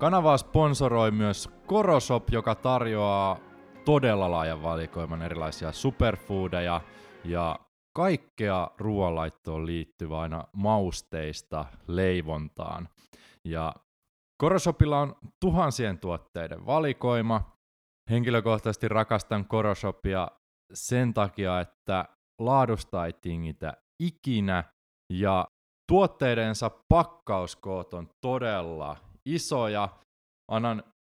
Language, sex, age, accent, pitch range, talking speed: Finnish, male, 20-39, native, 85-125 Hz, 80 wpm